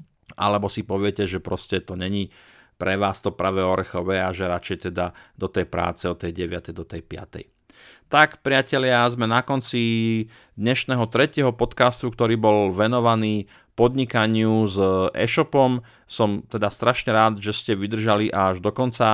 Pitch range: 95-115 Hz